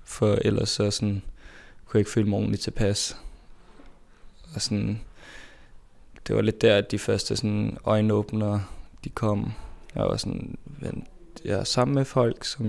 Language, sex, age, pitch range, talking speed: Danish, male, 20-39, 105-115 Hz, 150 wpm